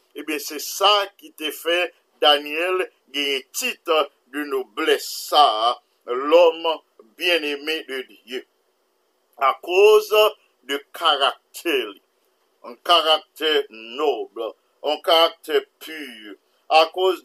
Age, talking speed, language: 50-69, 110 wpm, English